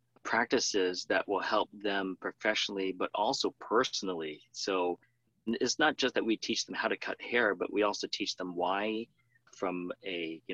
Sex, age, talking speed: male, 30-49, 170 wpm